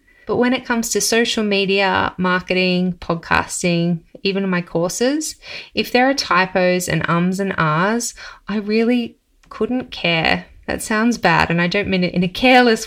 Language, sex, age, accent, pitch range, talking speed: English, female, 20-39, Australian, 165-215 Hz, 165 wpm